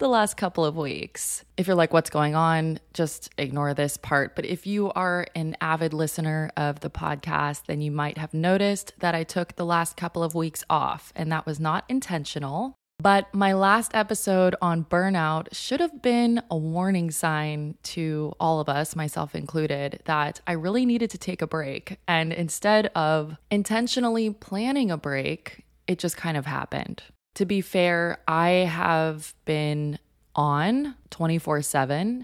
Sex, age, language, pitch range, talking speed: female, 20-39, English, 150-190 Hz, 170 wpm